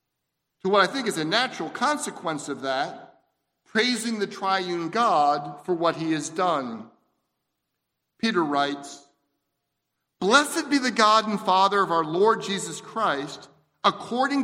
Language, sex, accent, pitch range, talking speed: English, male, American, 160-230 Hz, 135 wpm